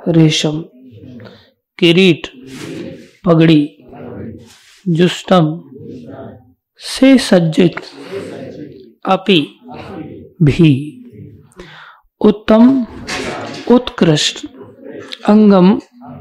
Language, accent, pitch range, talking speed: Hindi, native, 155-225 Hz, 40 wpm